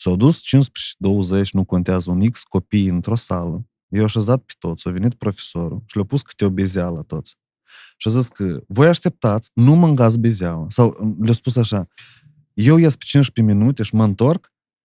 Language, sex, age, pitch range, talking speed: Romanian, male, 30-49, 100-135 Hz, 185 wpm